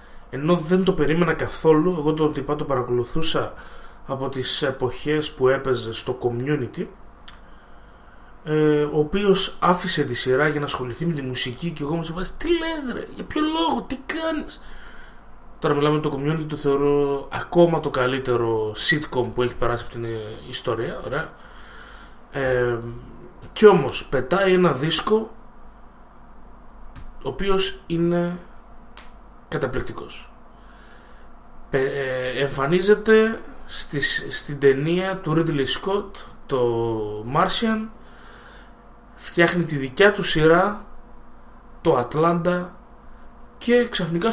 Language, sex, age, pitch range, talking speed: Greek, male, 30-49, 125-185 Hz, 120 wpm